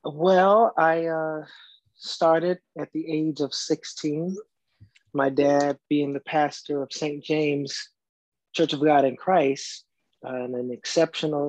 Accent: American